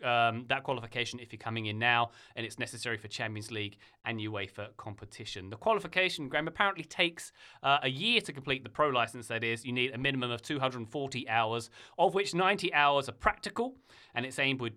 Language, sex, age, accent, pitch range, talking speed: English, male, 30-49, British, 115-155 Hz, 200 wpm